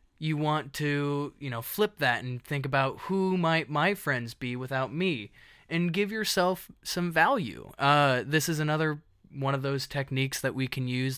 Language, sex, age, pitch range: English, male, 20-39, 125-145 Hz